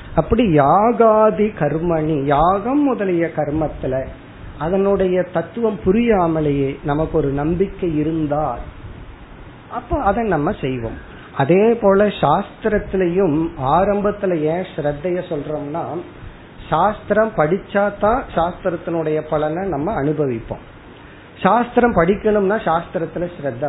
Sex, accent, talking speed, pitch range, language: male, native, 85 wpm, 150-200 Hz, Tamil